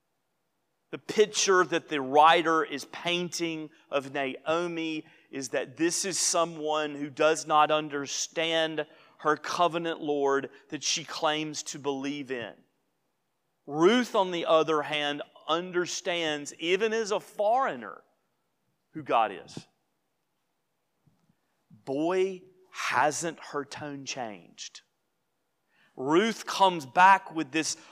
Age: 40-59